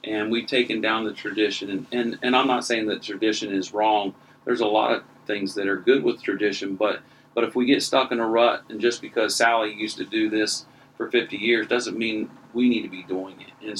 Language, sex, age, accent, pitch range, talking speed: English, male, 40-59, American, 105-135 Hz, 235 wpm